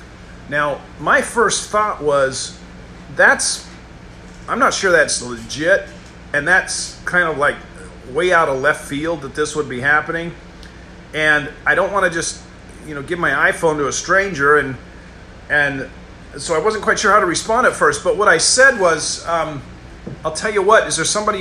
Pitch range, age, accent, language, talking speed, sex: 135-185 Hz, 40-59, American, English, 180 wpm, male